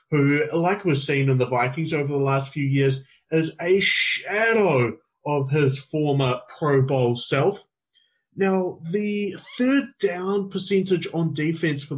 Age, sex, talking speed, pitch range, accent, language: 30-49, male, 145 wpm, 135-170 Hz, Australian, English